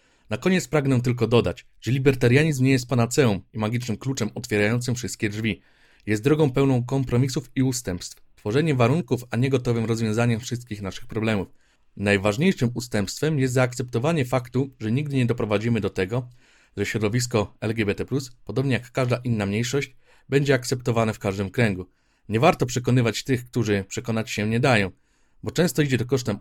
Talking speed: 155 wpm